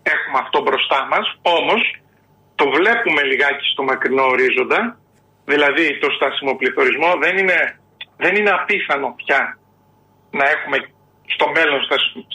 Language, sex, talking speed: Greek, male, 125 wpm